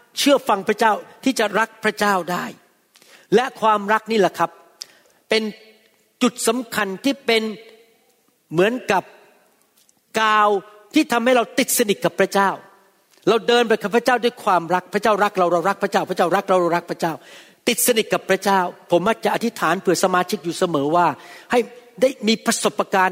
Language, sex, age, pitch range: Thai, male, 60-79, 175-230 Hz